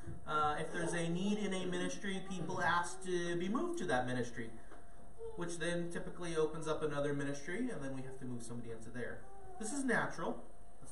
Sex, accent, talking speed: male, American, 200 wpm